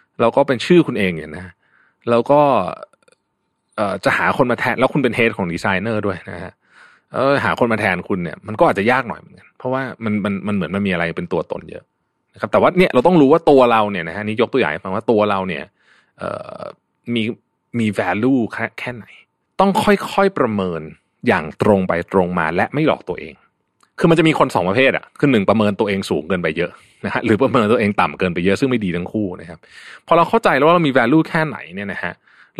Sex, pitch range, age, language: male, 100-150 Hz, 20-39, Thai